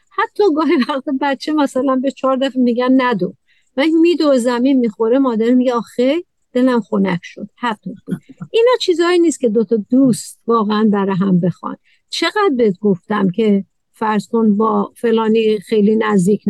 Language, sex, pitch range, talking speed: Persian, female, 215-270 Hz, 155 wpm